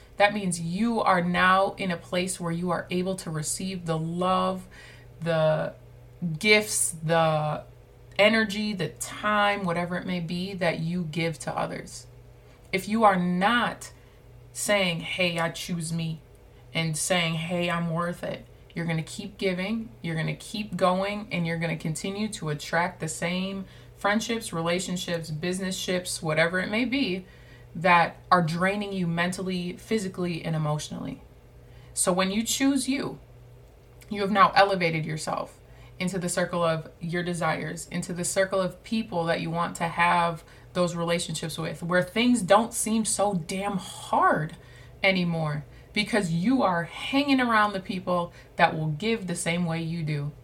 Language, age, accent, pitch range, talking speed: English, 20-39, American, 160-190 Hz, 160 wpm